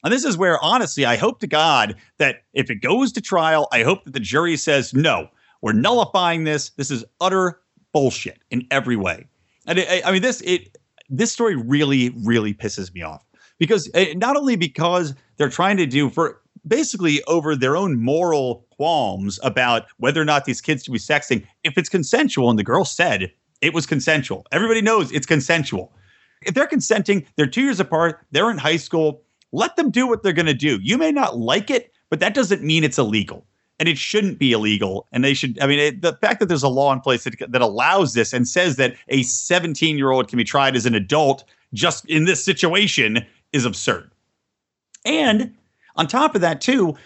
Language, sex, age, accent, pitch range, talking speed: English, male, 40-59, American, 130-190 Hz, 205 wpm